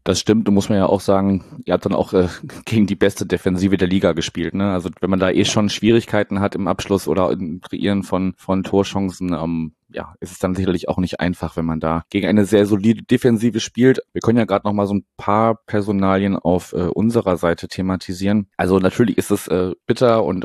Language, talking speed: German, 225 wpm